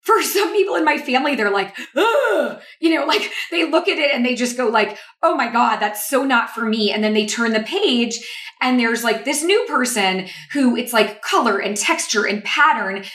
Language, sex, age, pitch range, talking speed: English, female, 20-39, 195-250 Hz, 225 wpm